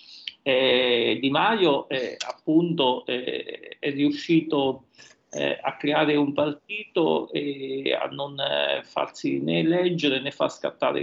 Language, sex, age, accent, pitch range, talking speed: Italian, male, 40-59, native, 130-175 Hz, 125 wpm